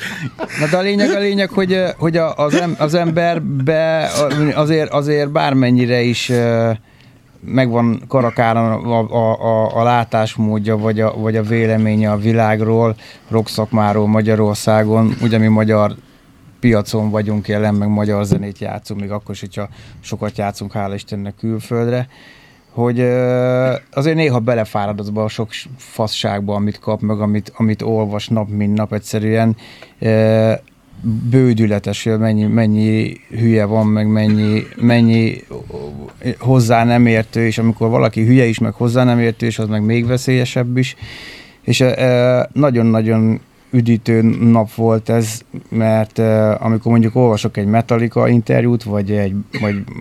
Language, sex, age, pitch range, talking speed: Hungarian, male, 20-39, 105-120 Hz, 130 wpm